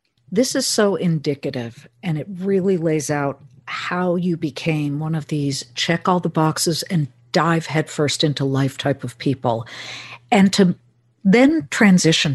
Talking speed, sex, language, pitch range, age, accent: 150 wpm, female, English, 155-245 Hz, 60-79, American